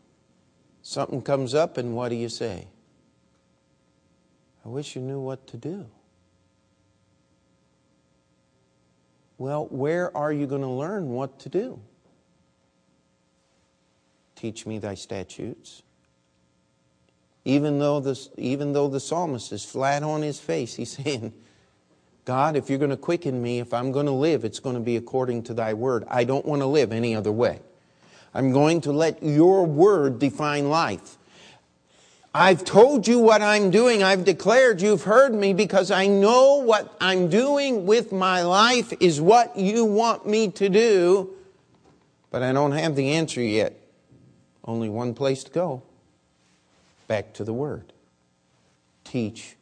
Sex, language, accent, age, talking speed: male, English, American, 50-69, 145 wpm